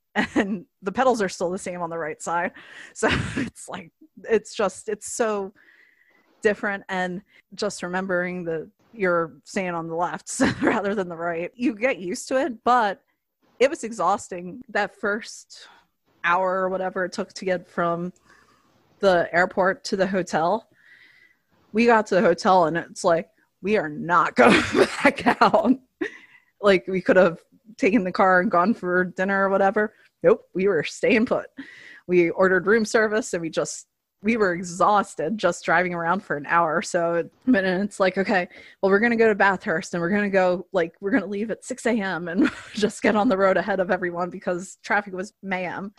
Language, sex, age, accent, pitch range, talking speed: English, female, 20-39, American, 180-220 Hz, 180 wpm